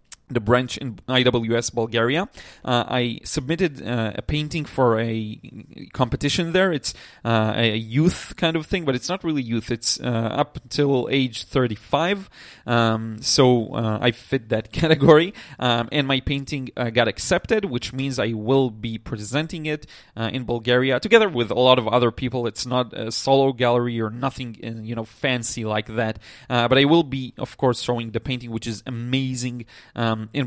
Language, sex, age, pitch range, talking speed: English, male, 30-49, 115-145 Hz, 180 wpm